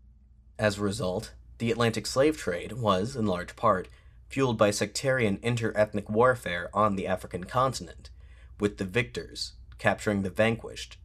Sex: male